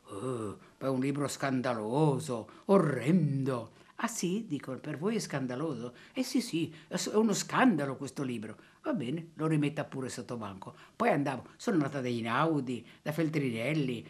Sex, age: female, 50-69